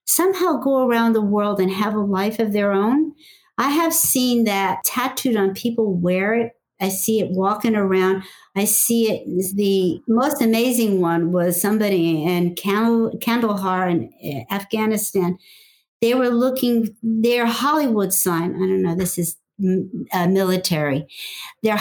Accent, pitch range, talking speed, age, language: American, 185-230 Hz, 145 wpm, 50-69, English